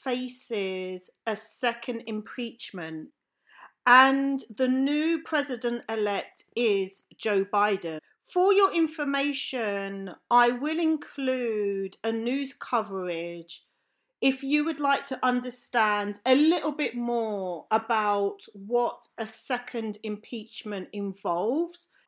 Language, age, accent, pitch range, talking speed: English, 40-59, British, 205-270 Hz, 100 wpm